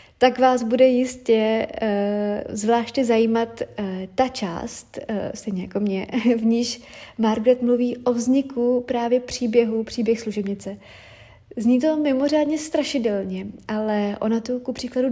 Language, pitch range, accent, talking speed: Czech, 210-245 Hz, native, 130 wpm